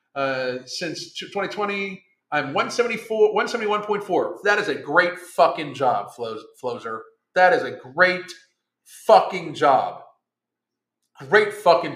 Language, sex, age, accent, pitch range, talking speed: English, male, 40-59, American, 135-185 Hz, 105 wpm